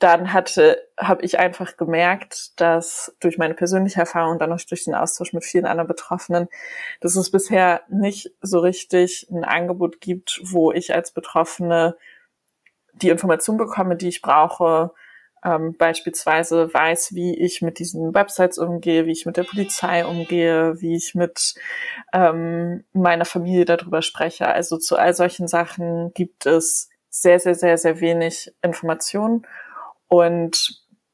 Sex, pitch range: female, 165-180 Hz